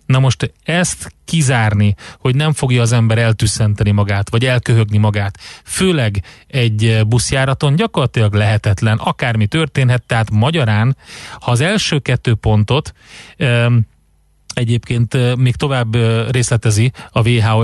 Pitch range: 110-130 Hz